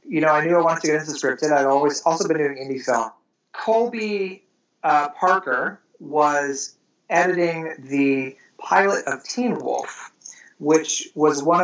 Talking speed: 165 wpm